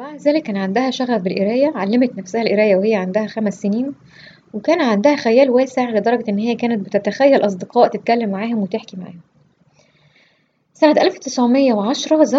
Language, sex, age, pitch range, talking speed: English, female, 20-39, 205-275 Hz, 130 wpm